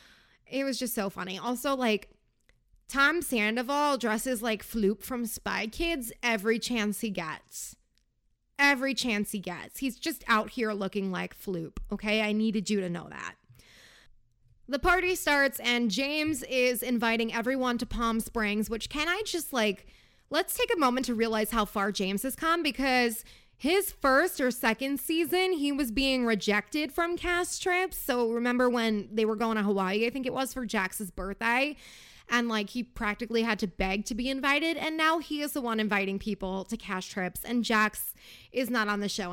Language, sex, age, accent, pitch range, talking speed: English, female, 20-39, American, 210-275 Hz, 185 wpm